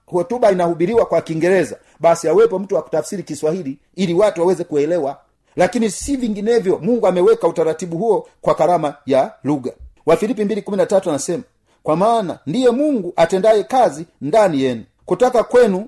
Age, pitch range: 40-59, 155-210 Hz